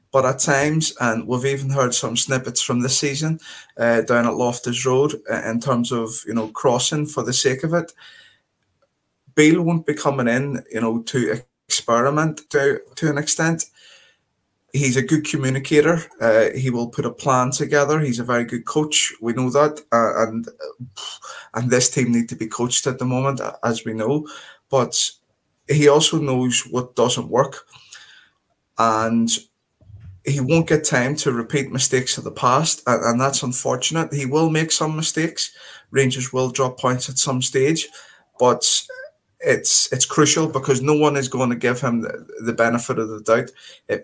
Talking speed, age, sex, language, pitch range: 175 wpm, 20-39, male, English, 115-145 Hz